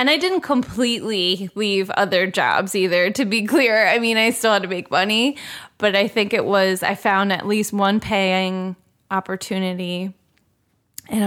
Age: 20-39